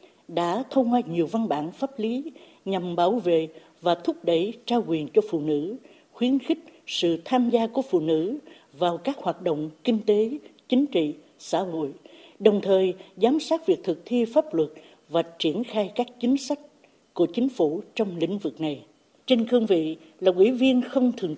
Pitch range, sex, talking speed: 170-245 Hz, female, 190 wpm